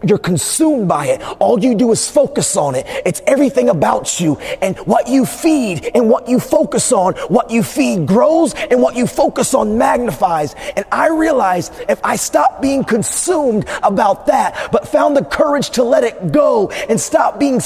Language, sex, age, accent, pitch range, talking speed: English, male, 30-49, American, 180-275 Hz, 185 wpm